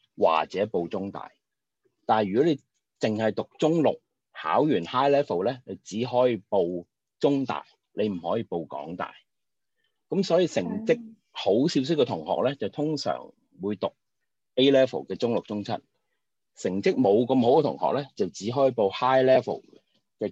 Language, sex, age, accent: Chinese, male, 30-49, native